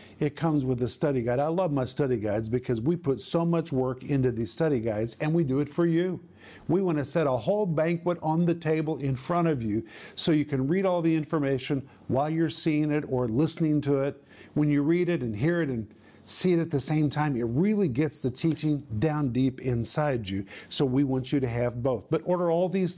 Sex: male